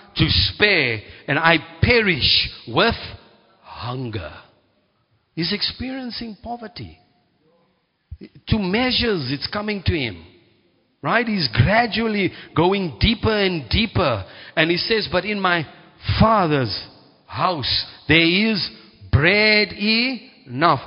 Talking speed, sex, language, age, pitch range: 100 wpm, male, English, 50-69, 140-200 Hz